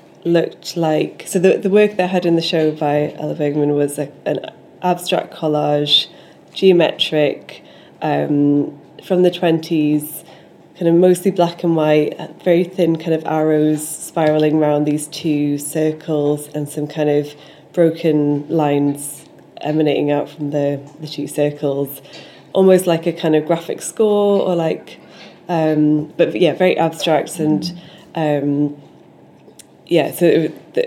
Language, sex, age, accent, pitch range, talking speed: English, female, 20-39, British, 150-175 Hz, 140 wpm